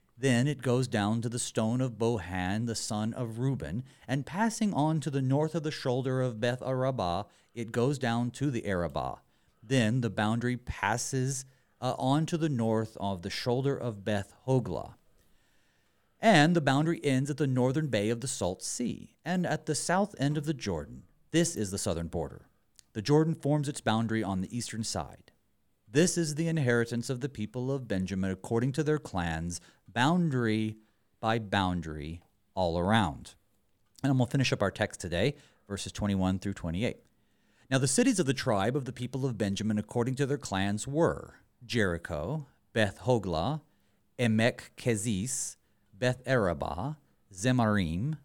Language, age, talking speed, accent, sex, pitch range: English, 40-59, 160 wpm, American, male, 100-140 Hz